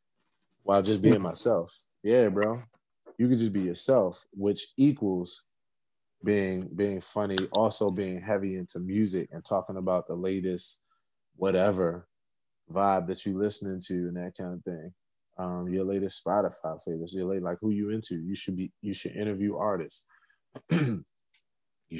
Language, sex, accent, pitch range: English, male, American, 90-120 Hz